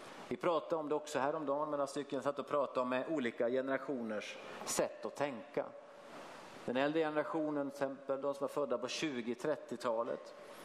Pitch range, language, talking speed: 130-165 Hz, Swedish, 160 wpm